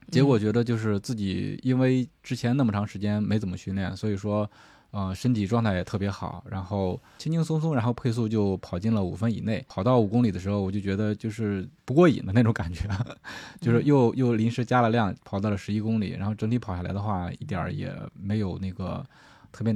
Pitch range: 100-120 Hz